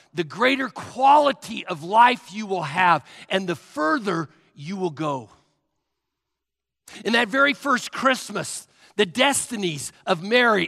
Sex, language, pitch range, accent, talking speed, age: male, English, 175-245 Hz, American, 130 wpm, 50-69